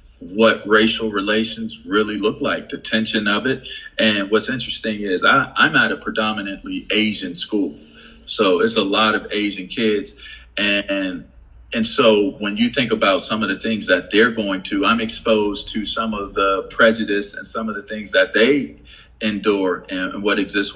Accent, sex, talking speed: American, male, 175 wpm